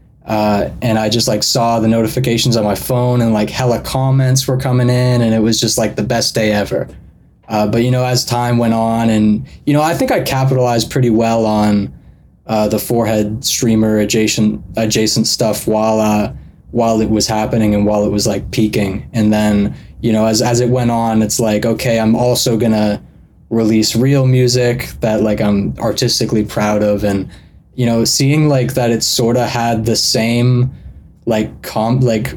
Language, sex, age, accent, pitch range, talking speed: English, male, 20-39, American, 105-125 Hz, 190 wpm